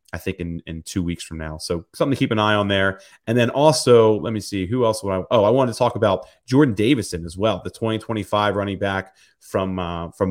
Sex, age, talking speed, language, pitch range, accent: male, 30-49, 250 wpm, English, 95-120 Hz, American